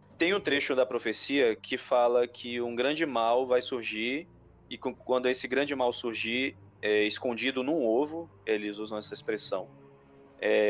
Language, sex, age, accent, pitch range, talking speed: Portuguese, male, 20-39, Brazilian, 105-125 Hz, 155 wpm